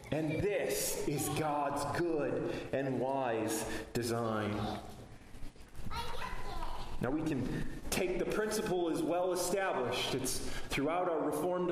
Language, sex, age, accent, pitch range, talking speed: English, male, 30-49, American, 175-255 Hz, 110 wpm